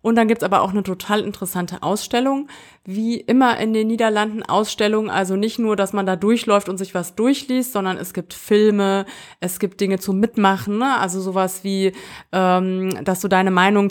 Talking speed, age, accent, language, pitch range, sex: 195 wpm, 30-49, German, German, 185-215 Hz, female